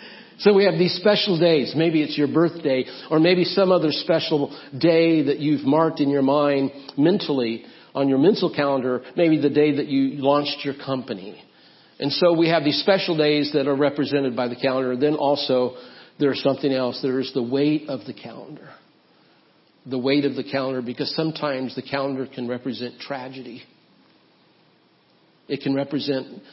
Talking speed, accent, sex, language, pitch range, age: 170 wpm, American, male, English, 135-160 Hz, 50-69